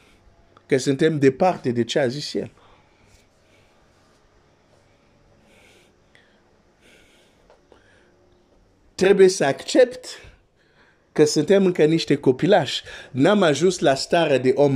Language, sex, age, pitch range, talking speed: Romanian, male, 50-69, 120-165 Hz, 90 wpm